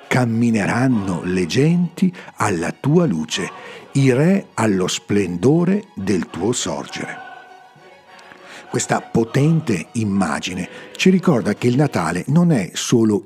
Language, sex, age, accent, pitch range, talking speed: Italian, male, 50-69, native, 120-180 Hz, 110 wpm